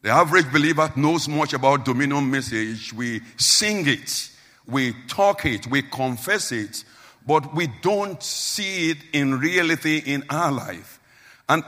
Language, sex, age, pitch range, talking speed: English, male, 50-69, 130-165 Hz, 145 wpm